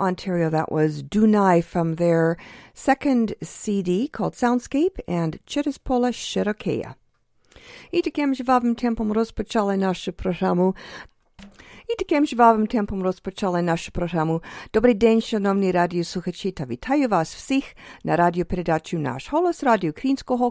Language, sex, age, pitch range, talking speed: English, female, 50-69, 185-245 Hz, 100 wpm